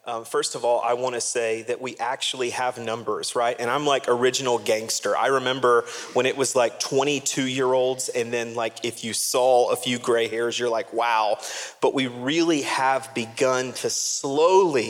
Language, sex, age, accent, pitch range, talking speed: English, male, 30-49, American, 120-150 Hz, 185 wpm